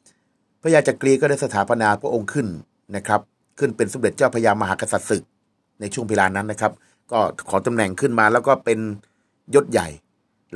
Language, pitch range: Thai, 100-125 Hz